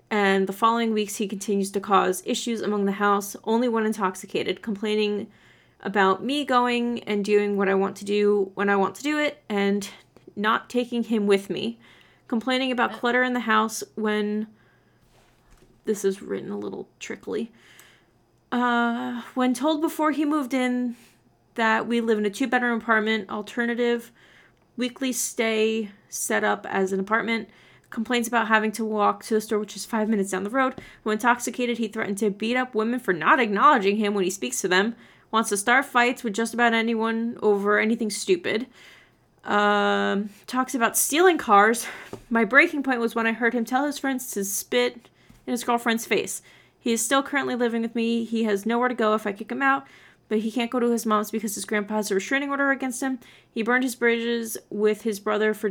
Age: 30-49